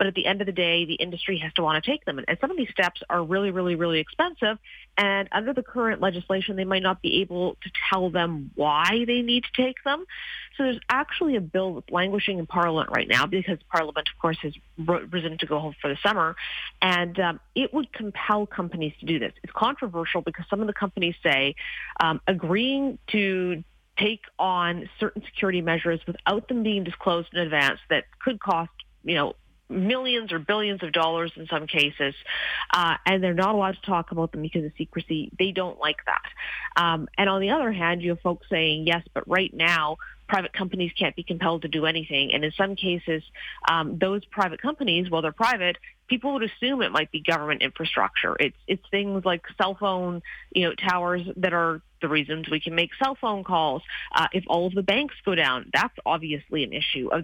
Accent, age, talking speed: American, 40-59, 210 wpm